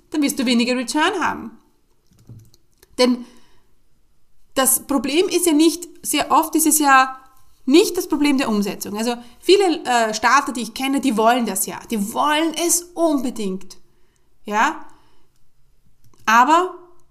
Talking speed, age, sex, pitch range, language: 135 wpm, 30-49, female, 210-285 Hz, German